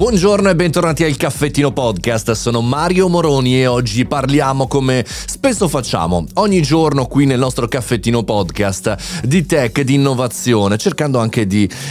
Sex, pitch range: male, 115-170 Hz